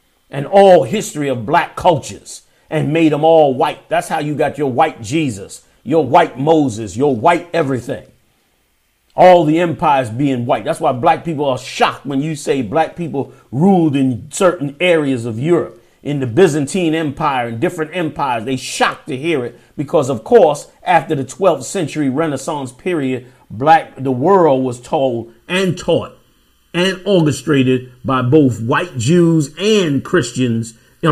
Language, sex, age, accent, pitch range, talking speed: English, male, 40-59, American, 130-165 Hz, 160 wpm